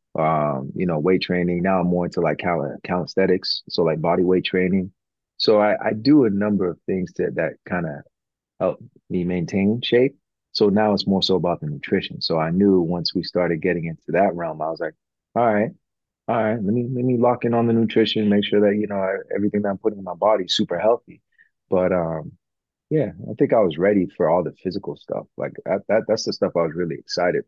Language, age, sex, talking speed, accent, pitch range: English, 30-49, male, 230 wpm, American, 85-105 Hz